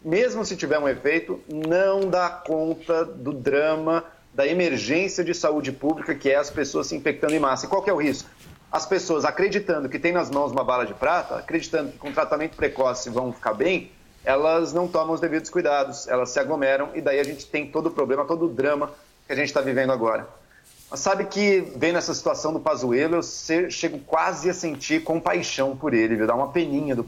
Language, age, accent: Portuguese, 40-59, Brazilian